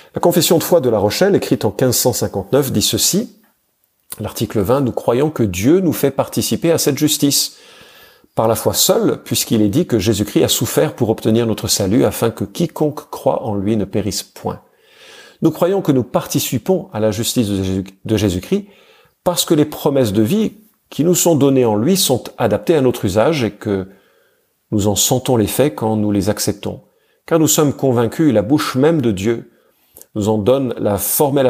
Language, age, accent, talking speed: French, 50-69, French, 195 wpm